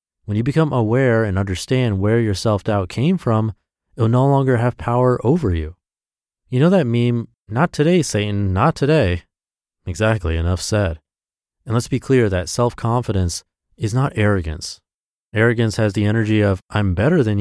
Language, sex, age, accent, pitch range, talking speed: English, male, 30-49, American, 90-120 Hz, 165 wpm